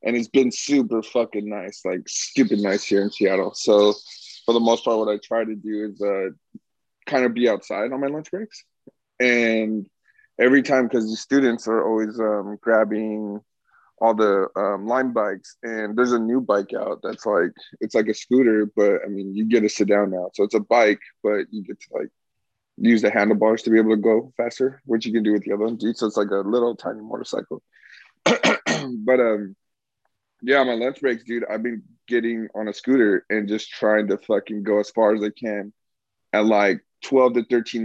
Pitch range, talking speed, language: 105-120 Hz, 205 wpm, English